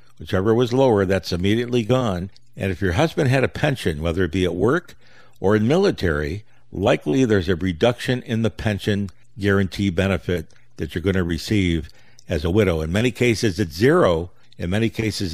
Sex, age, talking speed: male, 60-79, 180 wpm